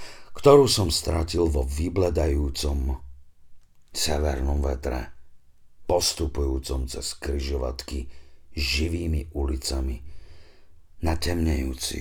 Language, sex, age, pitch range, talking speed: Slovak, male, 50-69, 70-85 Hz, 70 wpm